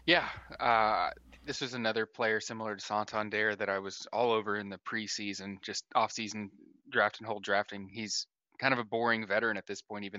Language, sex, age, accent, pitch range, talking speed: English, male, 20-39, American, 105-115 Hz, 195 wpm